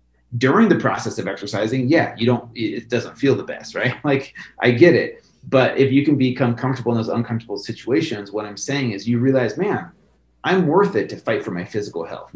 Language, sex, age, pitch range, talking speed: English, male, 30-49, 115-140 Hz, 215 wpm